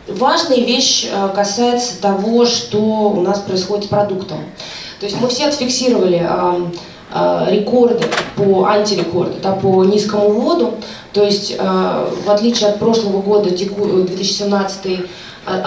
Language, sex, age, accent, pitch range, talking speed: Russian, female, 20-39, native, 190-225 Hz, 125 wpm